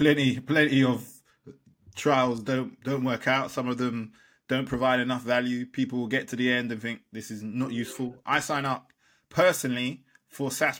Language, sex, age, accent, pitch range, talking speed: English, male, 20-39, British, 115-135 Hz, 180 wpm